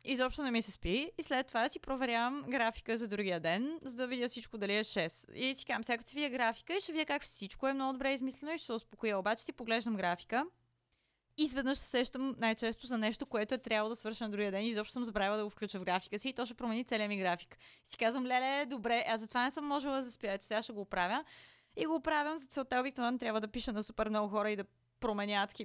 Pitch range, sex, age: 205-255 Hz, female, 20-39